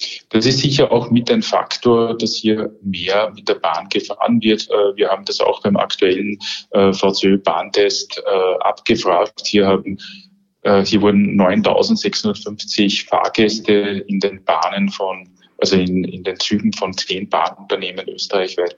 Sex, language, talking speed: male, German, 130 wpm